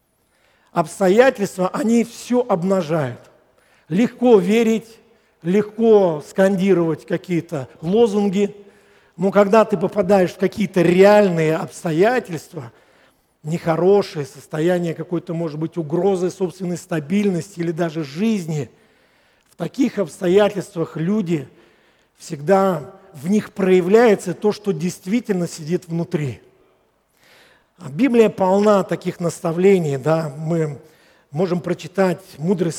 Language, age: Russian, 50-69